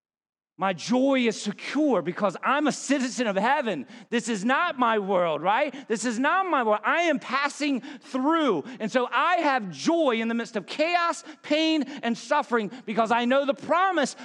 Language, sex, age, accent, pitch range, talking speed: English, male, 40-59, American, 215-290 Hz, 180 wpm